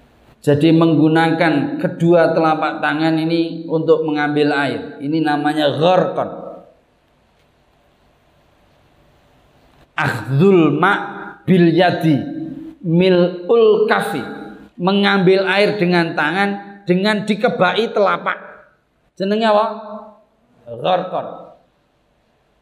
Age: 40-59